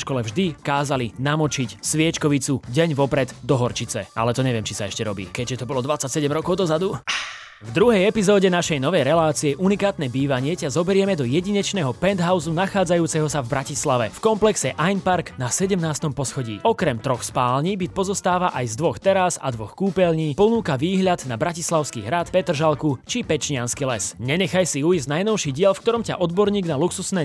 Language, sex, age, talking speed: Slovak, male, 20-39, 170 wpm